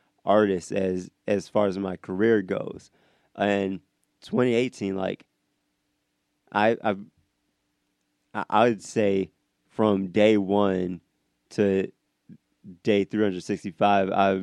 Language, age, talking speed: English, 20-39, 90 wpm